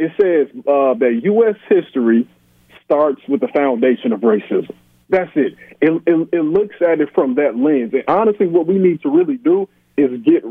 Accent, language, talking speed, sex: American, English, 190 wpm, male